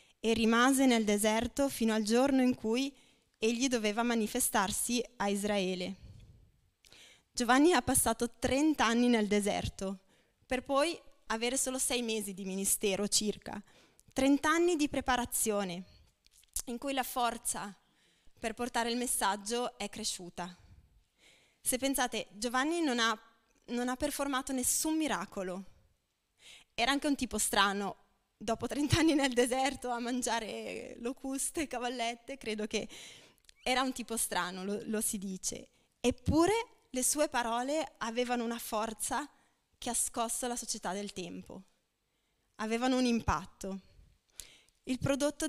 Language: Italian